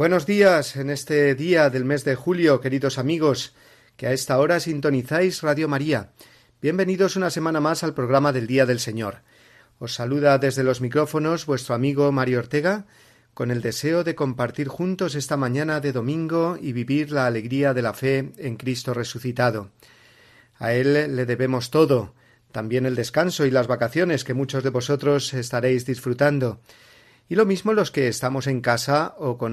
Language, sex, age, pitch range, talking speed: Spanish, male, 40-59, 125-150 Hz, 170 wpm